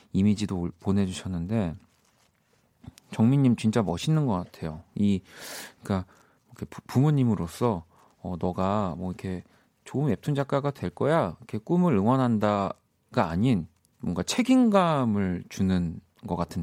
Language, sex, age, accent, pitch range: Korean, male, 40-59, native, 90-125 Hz